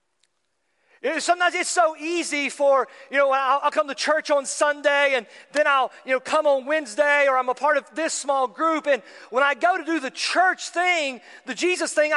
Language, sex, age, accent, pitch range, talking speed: English, male, 40-59, American, 260-320 Hz, 200 wpm